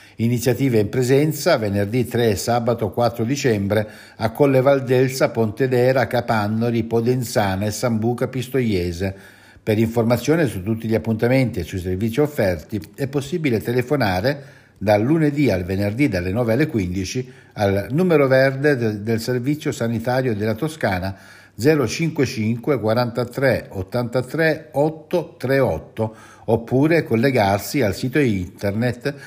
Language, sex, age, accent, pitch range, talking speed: Italian, male, 60-79, native, 110-145 Hz, 115 wpm